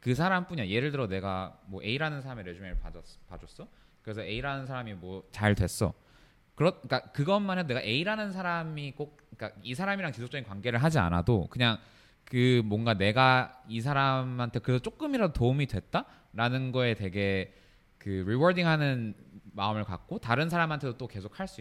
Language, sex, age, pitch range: Korean, male, 20-39, 100-145 Hz